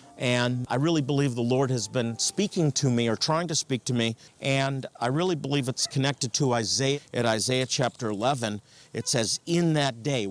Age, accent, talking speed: 50-69, American, 200 wpm